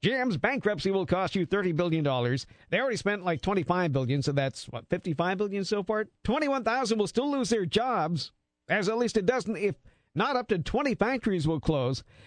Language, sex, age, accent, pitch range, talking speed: English, male, 50-69, American, 145-220 Hz, 200 wpm